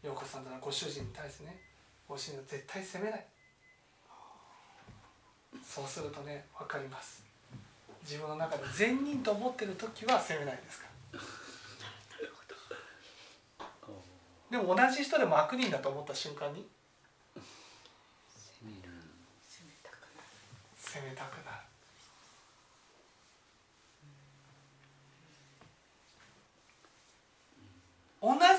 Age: 60-79